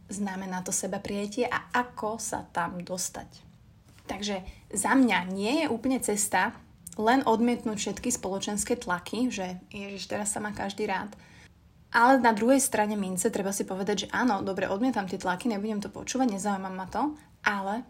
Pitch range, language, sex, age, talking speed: 195-240 Hz, Slovak, female, 20-39, 165 wpm